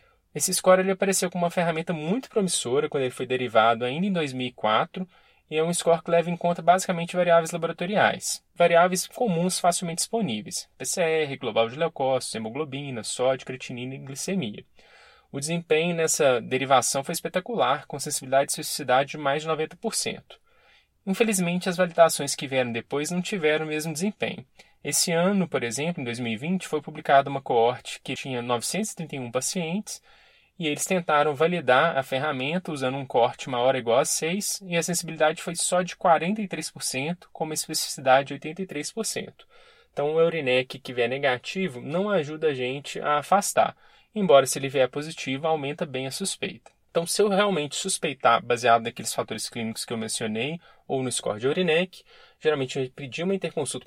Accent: Brazilian